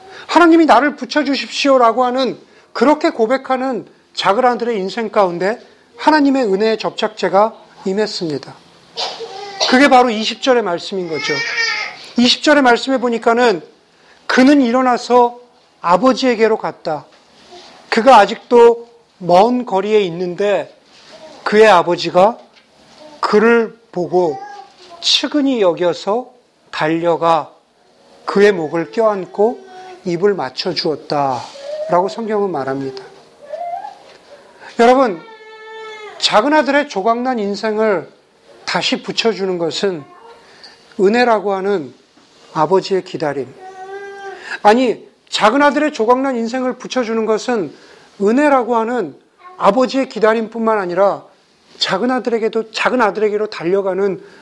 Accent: native